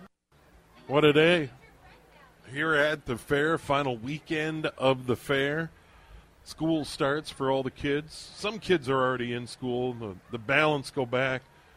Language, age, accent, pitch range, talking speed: English, 40-59, American, 120-150 Hz, 150 wpm